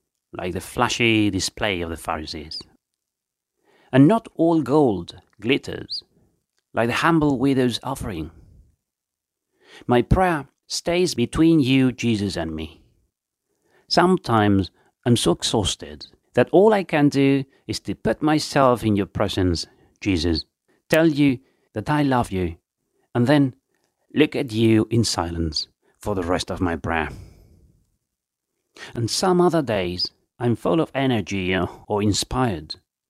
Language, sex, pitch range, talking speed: English, male, 90-135 Hz, 130 wpm